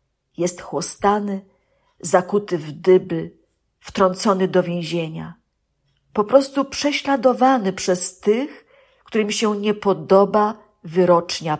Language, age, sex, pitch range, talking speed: Polish, 50-69, female, 180-230 Hz, 95 wpm